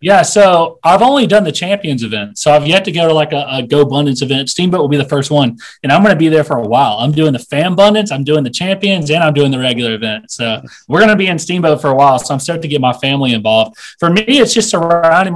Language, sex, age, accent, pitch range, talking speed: English, male, 30-49, American, 135-175 Hz, 285 wpm